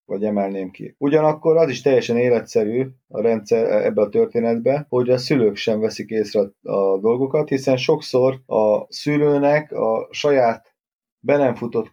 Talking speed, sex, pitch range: 140 wpm, male, 115-155 Hz